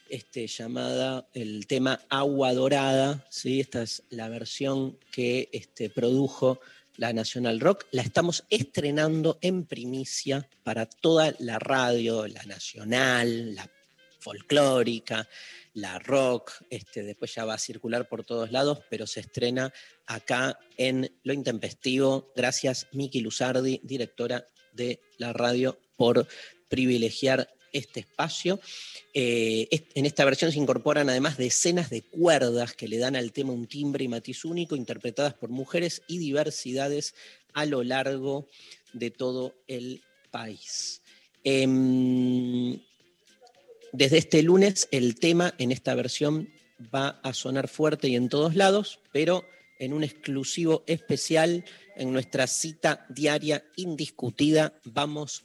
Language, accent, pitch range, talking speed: Spanish, Argentinian, 120-150 Hz, 125 wpm